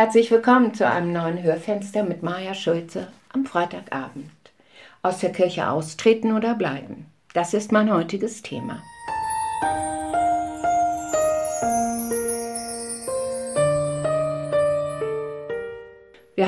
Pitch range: 160-220 Hz